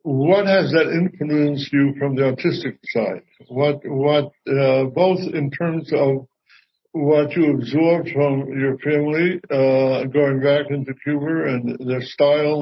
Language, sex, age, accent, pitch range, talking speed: English, male, 60-79, American, 135-160 Hz, 145 wpm